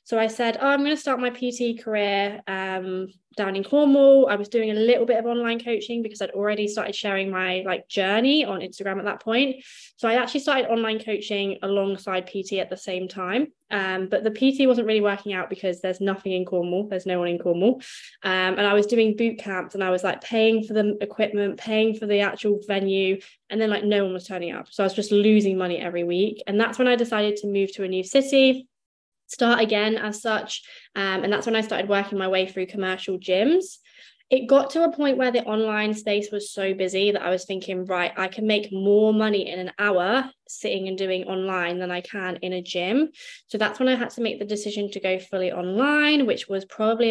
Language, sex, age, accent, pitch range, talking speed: English, female, 20-39, British, 190-230 Hz, 230 wpm